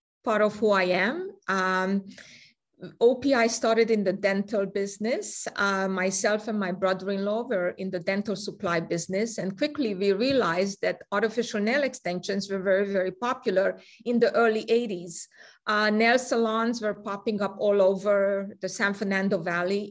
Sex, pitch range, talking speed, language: female, 195-235 Hz, 155 wpm, English